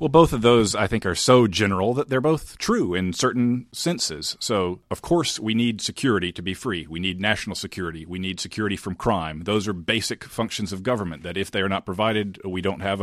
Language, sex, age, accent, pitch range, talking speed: English, male, 50-69, American, 90-110 Hz, 225 wpm